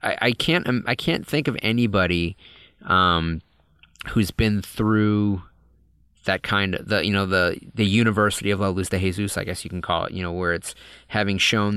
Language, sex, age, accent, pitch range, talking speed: English, male, 30-49, American, 90-105 Hz, 190 wpm